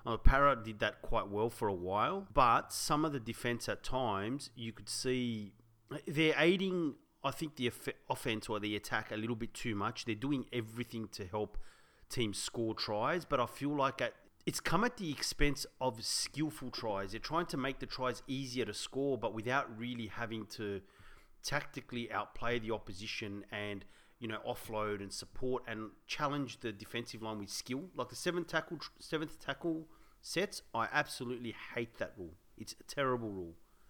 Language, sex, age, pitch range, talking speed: English, male, 30-49, 110-145 Hz, 175 wpm